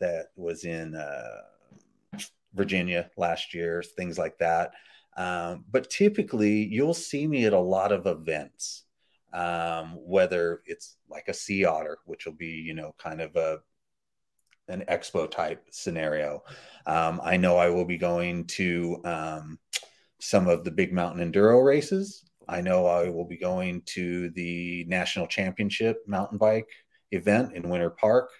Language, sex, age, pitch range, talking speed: English, male, 30-49, 85-110 Hz, 150 wpm